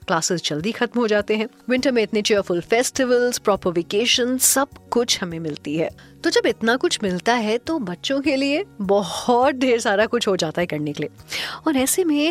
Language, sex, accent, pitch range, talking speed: Hindi, female, native, 180-250 Hz, 190 wpm